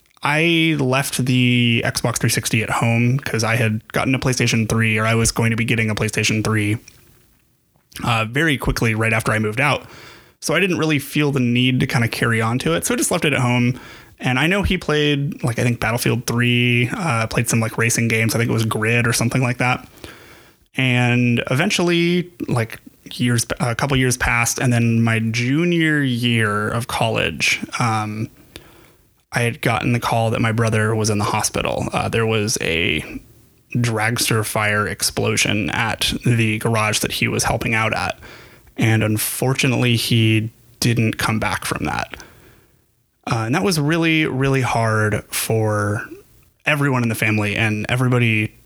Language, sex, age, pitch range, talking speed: English, male, 20-39, 110-130 Hz, 180 wpm